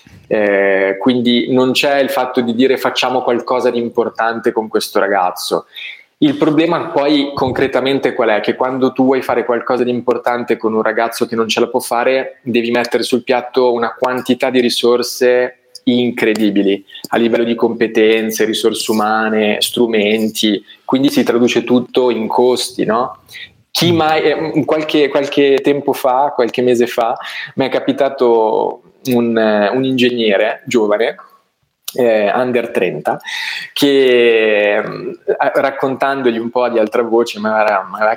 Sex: male